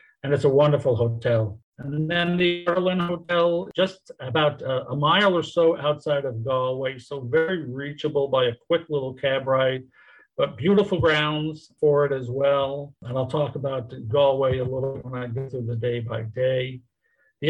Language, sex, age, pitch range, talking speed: English, male, 50-69, 130-160 Hz, 180 wpm